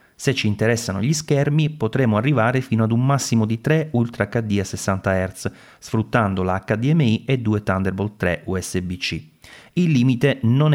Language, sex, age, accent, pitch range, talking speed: Italian, male, 30-49, native, 95-130 Hz, 160 wpm